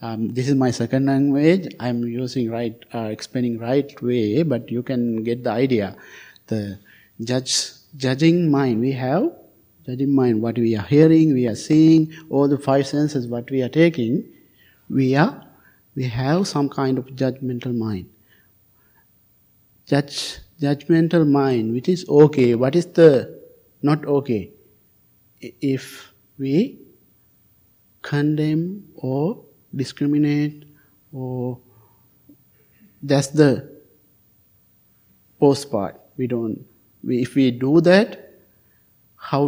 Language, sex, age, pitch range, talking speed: English, male, 50-69, 120-145 Hz, 120 wpm